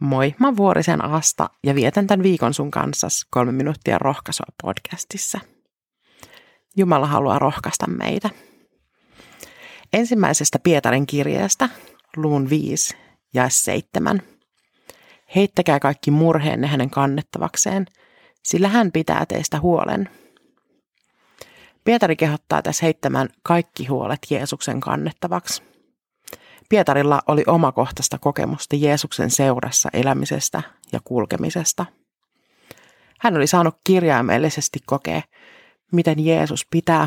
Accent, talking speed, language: native, 100 wpm, Finnish